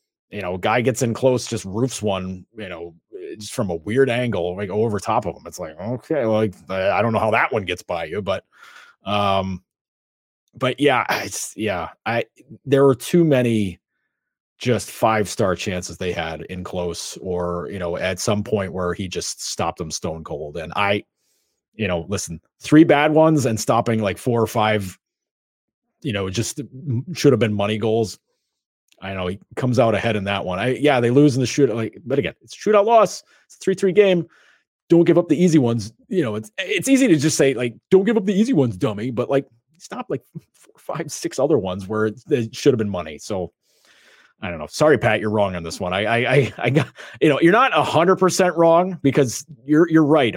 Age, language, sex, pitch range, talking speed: 30-49, English, male, 100-140 Hz, 215 wpm